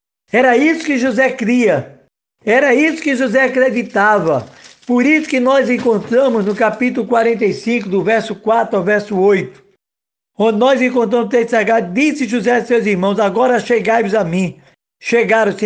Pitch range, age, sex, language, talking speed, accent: 195-245 Hz, 60-79, male, Portuguese, 155 wpm, Brazilian